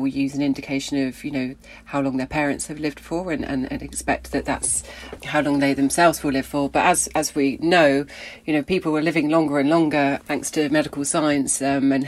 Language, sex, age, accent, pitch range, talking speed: English, female, 40-59, British, 135-150 Hz, 225 wpm